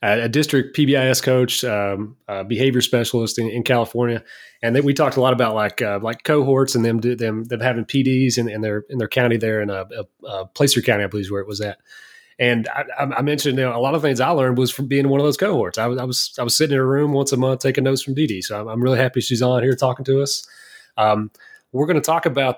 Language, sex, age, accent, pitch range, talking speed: English, male, 30-49, American, 115-135 Hz, 275 wpm